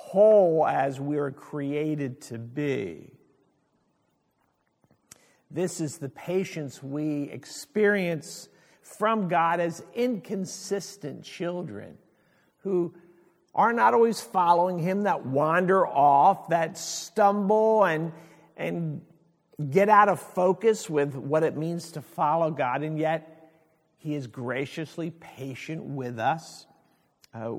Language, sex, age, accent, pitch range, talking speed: English, male, 50-69, American, 145-180 Hz, 110 wpm